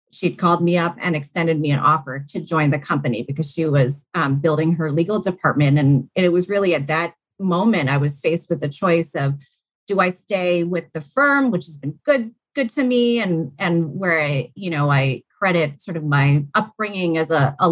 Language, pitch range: English, 165-220 Hz